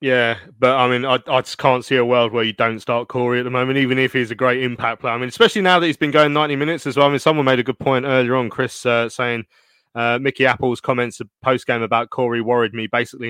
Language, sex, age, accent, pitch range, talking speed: English, male, 20-39, British, 120-150 Hz, 275 wpm